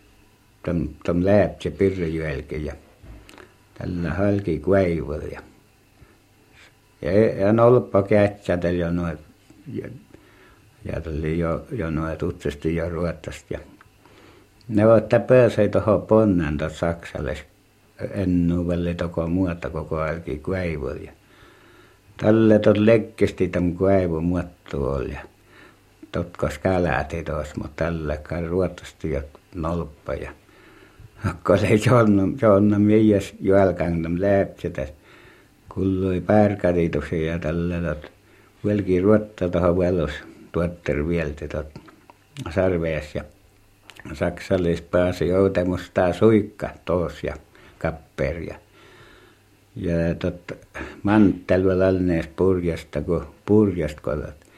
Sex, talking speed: male, 80 wpm